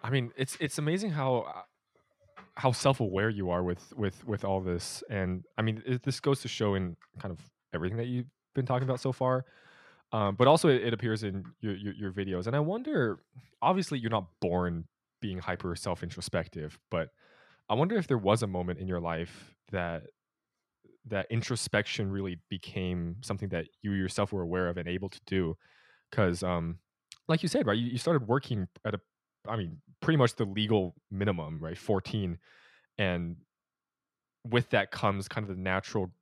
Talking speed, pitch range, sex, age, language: 190 wpm, 90-120 Hz, male, 20-39, English